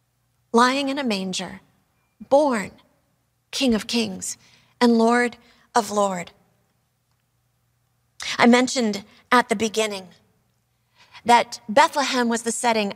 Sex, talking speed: female, 100 wpm